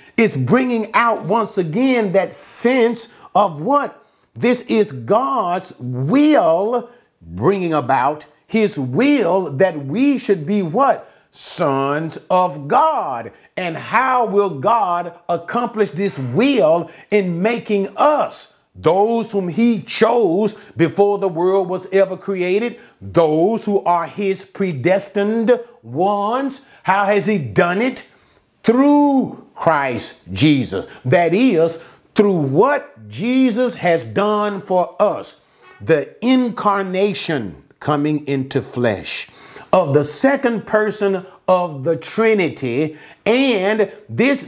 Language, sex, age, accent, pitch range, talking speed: English, male, 50-69, American, 165-225 Hz, 110 wpm